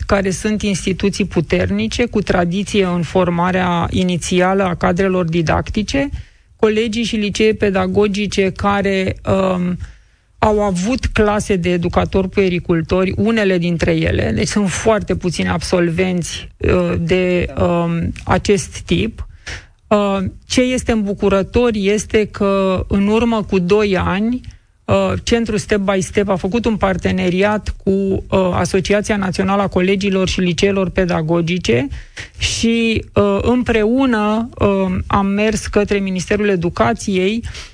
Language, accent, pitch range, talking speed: Romanian, native, 185-215 Hz, 105 wpm